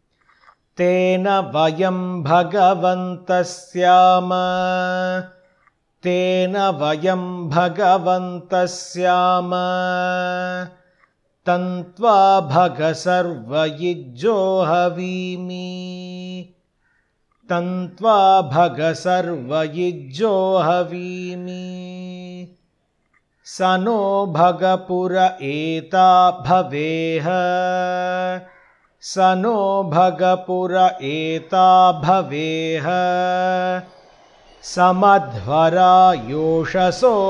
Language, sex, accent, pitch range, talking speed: Hindi, male, native, 175-185 Hz, 30 wpm